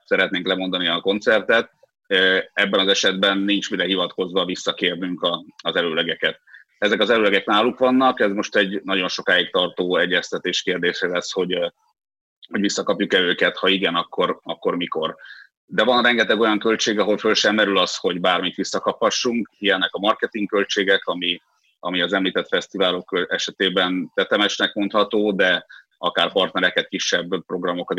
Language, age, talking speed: Hungarian, 30-49, 140 wpm